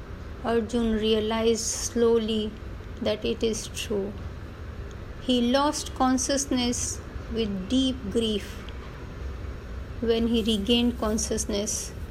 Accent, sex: native, female